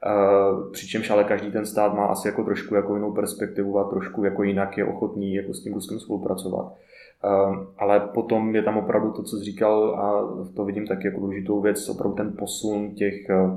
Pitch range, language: 100-115 Hz, Czech